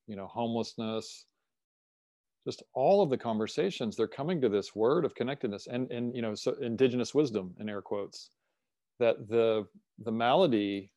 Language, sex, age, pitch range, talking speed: English, male, 40-59, 105-120 Hz, 160 wpm